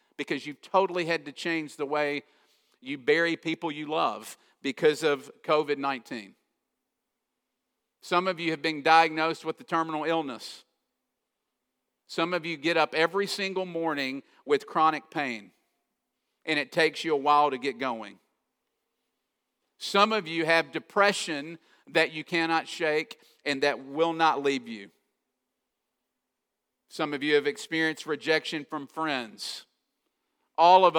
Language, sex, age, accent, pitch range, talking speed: English, male, 50-69, American, 150-175 Hz, 140 wpm